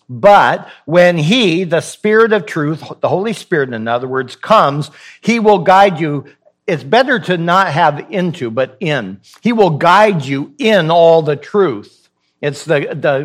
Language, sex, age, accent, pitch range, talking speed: English, male, 60-79, American, 145-200 Hz, 170 wpm